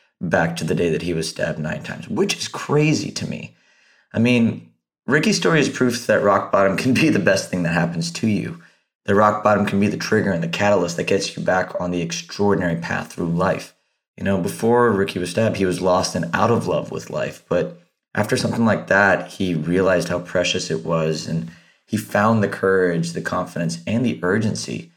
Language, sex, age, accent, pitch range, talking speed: English, male, 30-49, American, 85-105 Hz, 215 wpm